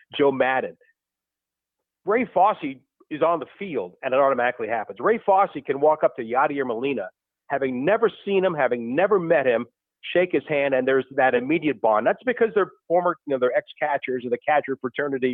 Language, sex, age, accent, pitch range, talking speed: English, male, 50-69, American, 130-185 Hz, 190 wpm